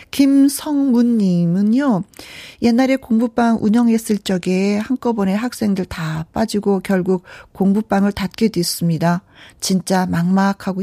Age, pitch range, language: 40-59, 170-225 Hz, Korean